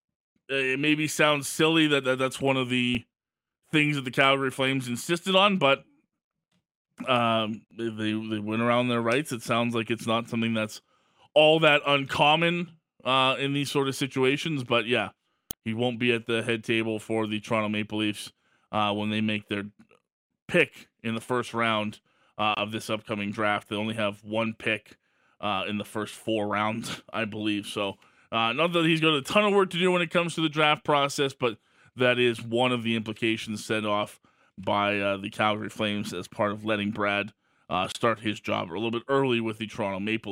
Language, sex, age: English, male, 20-39